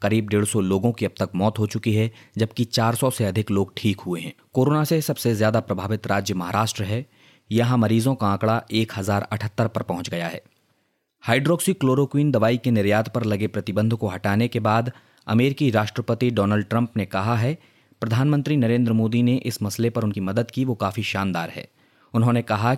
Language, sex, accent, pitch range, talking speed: Hindi, male, native, 105-125 Hz, 185 wpm